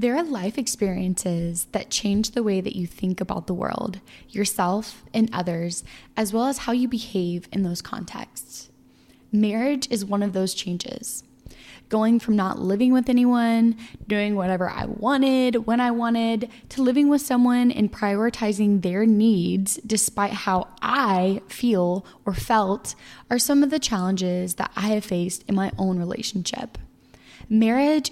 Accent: American